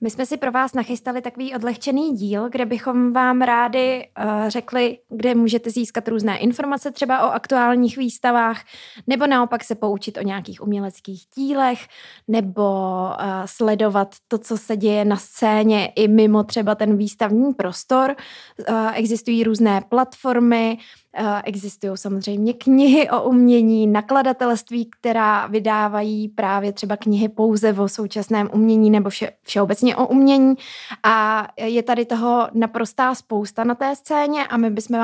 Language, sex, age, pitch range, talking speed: Czech, female, 20-39, 215-245 Hz, 140 wpm